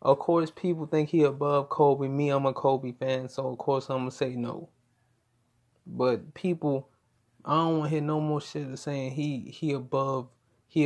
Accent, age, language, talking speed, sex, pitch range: American, 20-39, English, 200 wpm, male, 120-145 Hz